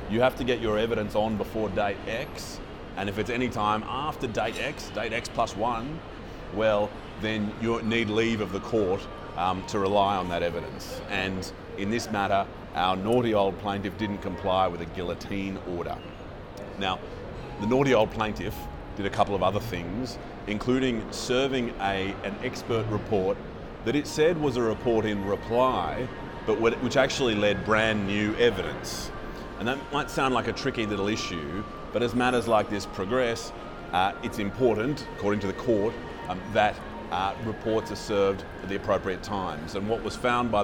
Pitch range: 100-115 Hz